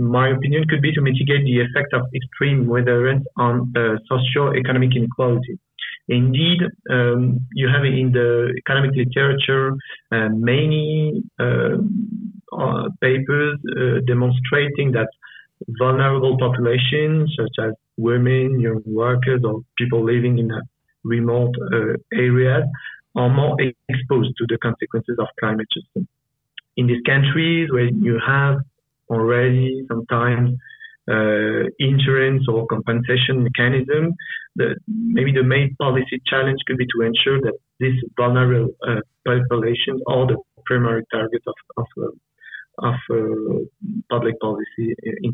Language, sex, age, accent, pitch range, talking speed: French, male, 50-69, French, 120-140 Hz, 125 wpm